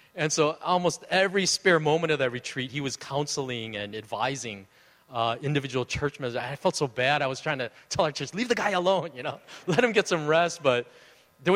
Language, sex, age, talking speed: English, male, 30-49, 220 wpm